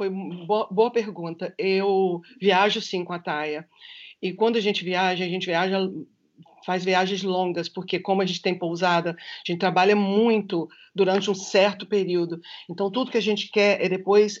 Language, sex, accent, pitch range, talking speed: Portuguese, female, Brazilian, 185-215 Hz, 180 wpm